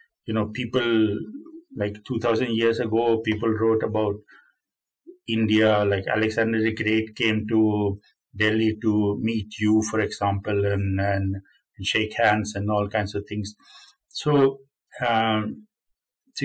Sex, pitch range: male, 110-145 Hz